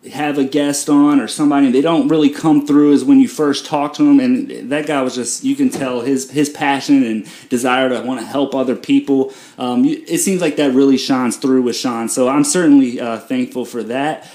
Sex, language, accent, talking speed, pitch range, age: male, English, American, 225 wpm, 130-175 Hz, 30-49